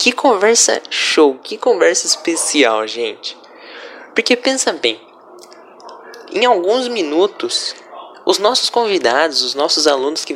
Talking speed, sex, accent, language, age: 115 wpm, male, Brazilian, Portuguese, 10-29